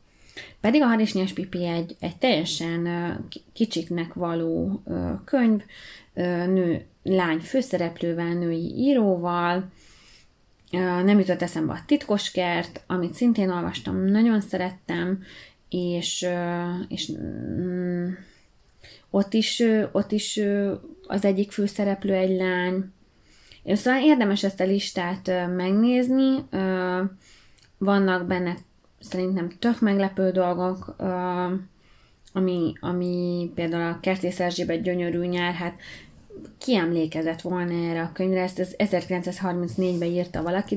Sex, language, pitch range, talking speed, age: female, English, 175-195 Hz, 100 wpm, 20-39